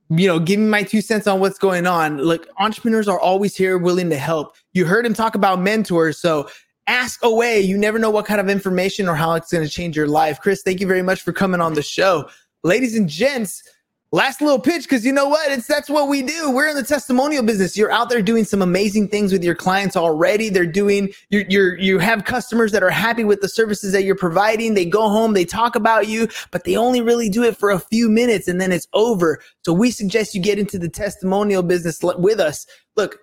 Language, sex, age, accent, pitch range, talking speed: English, male, 20-39, American, 185-225 Hz, 240 wpm